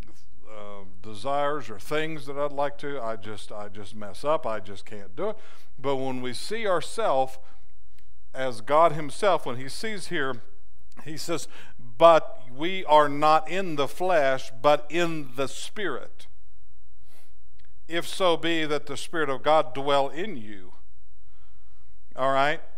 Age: 50-69